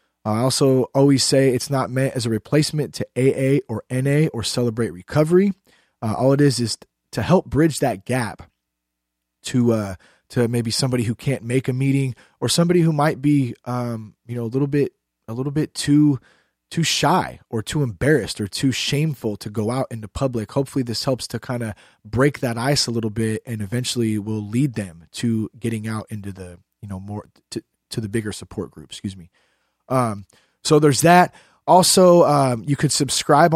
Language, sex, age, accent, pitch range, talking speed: English, male, 20-39, American, 110-140 Hz, 195 wpm